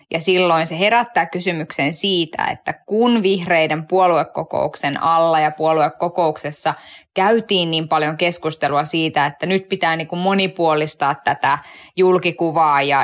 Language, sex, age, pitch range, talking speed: Finnish, female, 20-39, 160-220 Hz, 110 wpm